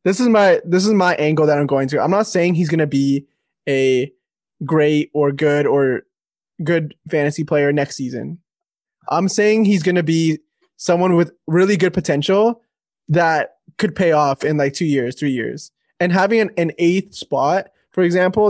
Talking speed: 180 wpm